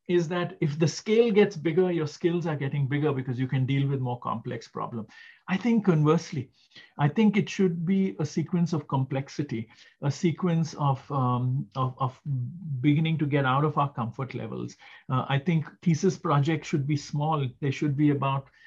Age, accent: 50-69, Indian